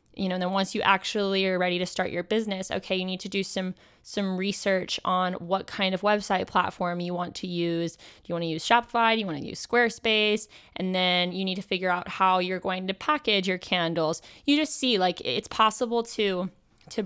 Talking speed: 230 wpm